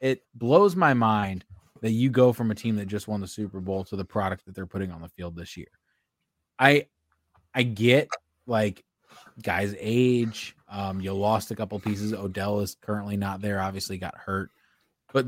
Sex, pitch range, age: male, 100-125 Hz, 20-39